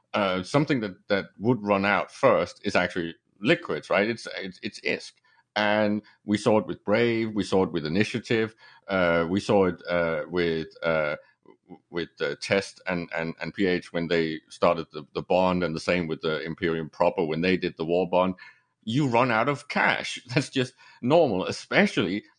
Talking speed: 190 wpm